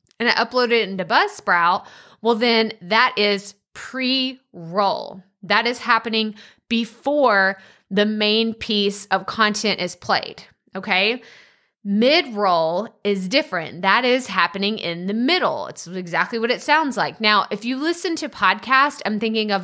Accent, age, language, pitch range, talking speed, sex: American, 20-39, English, 195-255 Hz, 145 wpm, female